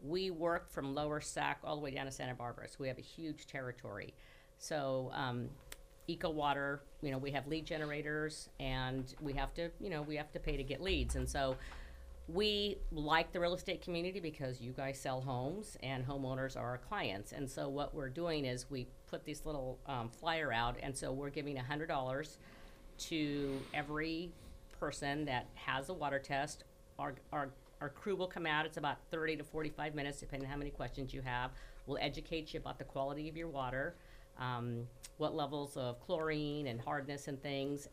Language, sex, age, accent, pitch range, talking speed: English, female, 50-69, American, 130-155 Hz, 200 wpm